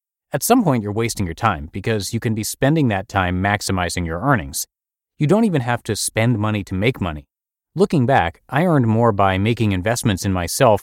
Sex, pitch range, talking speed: male, 95-130 Hz, 205 wpm